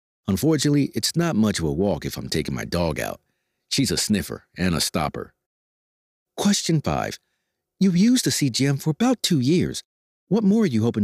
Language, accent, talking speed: English, American, 185 wpm